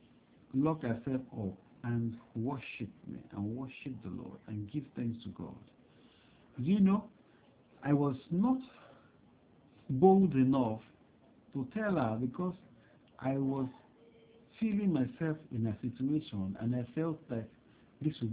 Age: 60-79